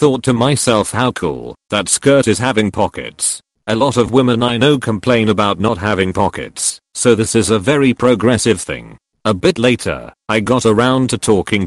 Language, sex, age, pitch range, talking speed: English, male, 40-59, 105-125 Hz, 185 wpm